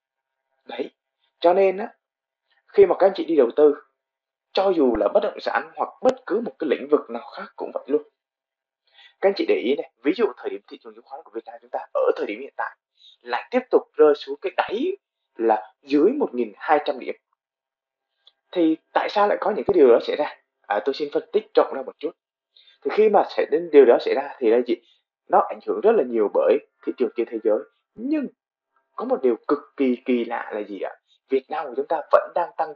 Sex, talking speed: male, 230 wpm